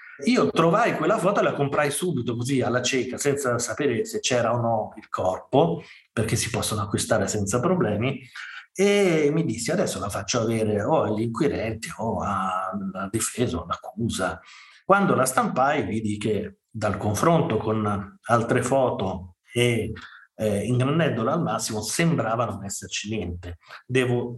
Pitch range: 105-125 Hz